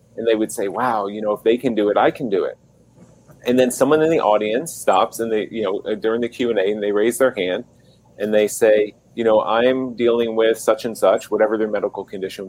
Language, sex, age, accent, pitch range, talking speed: English, male, 30-49, American, 105-125 Hz, 250 wpm